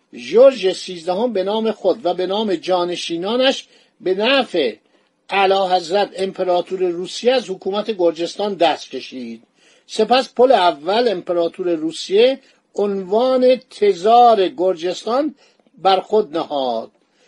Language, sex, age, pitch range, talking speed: Persian, male, 50-69, 185-240 Hz, 110 wpm